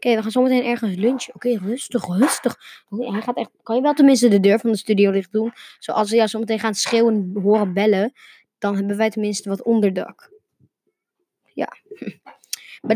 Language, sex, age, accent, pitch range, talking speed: Dutch, female, 20-39, Dutch, 210-250 Hz, 205 wpm